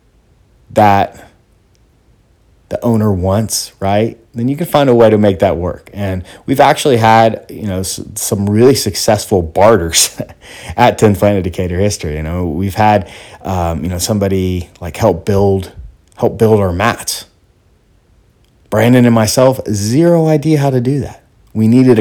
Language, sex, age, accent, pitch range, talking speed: English, male, 30-49, American, 95-110 Hz, 155 wpm